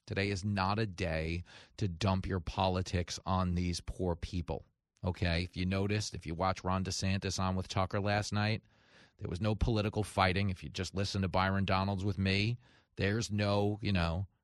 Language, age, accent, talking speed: English, 30-49, American, 185 wpm